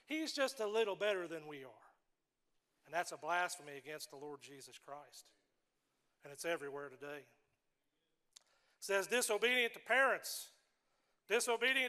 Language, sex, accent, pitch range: English, male, American, 170-240 Hz